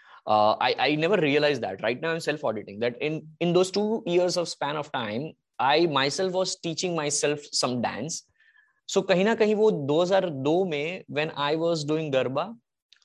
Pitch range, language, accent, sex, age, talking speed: 120-155 Hz, English, Indian, male, 20-39, 180 wpm